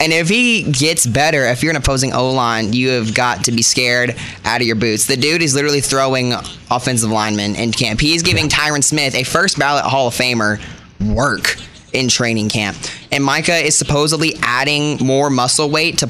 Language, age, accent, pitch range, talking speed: English, 10-29, American, 115-145 Hz, 195 wpm